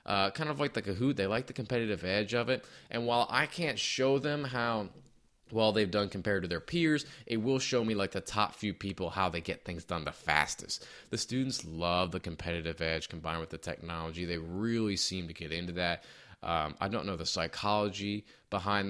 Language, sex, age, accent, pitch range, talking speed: English, male, 20-39, American, 90-125 Hz, 215 wpm